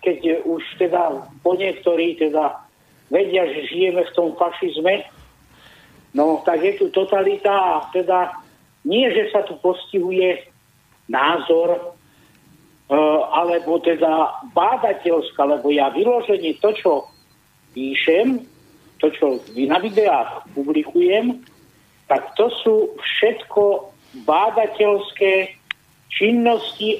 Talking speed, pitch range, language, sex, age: 100 wpm, 160-215 Hz, Slovak, male, 50-69